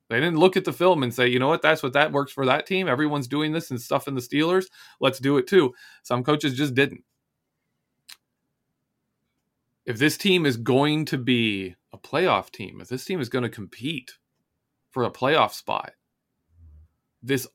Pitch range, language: 120-160 Hz, English